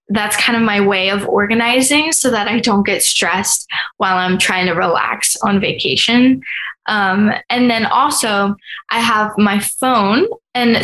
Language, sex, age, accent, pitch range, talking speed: English, female, 10-29, American, 195-230 Hz, 160 wpm